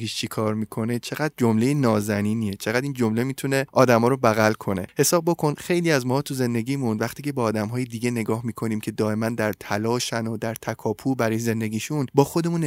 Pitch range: 110-140 Hz